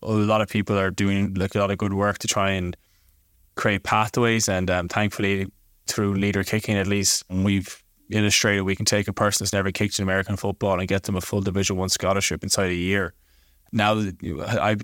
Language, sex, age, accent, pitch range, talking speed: English, male, 10-29, Irish, 95-105 Hz, 205 wpm